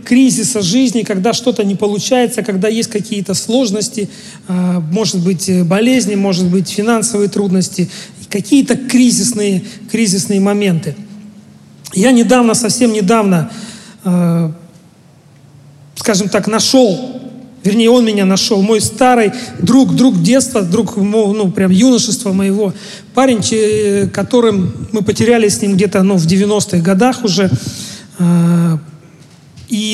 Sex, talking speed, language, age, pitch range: male, 110 wpm, Russian, 40-59, 195-230 Hz